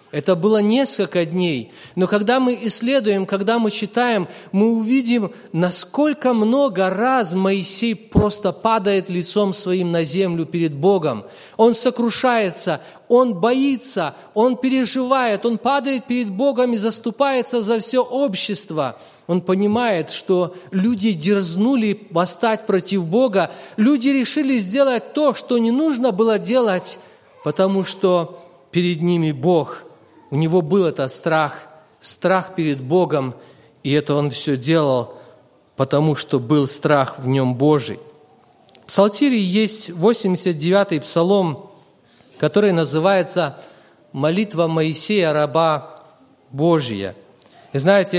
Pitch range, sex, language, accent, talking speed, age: 165-225 Hz, male, Russian, native, 120 wpm, 30-49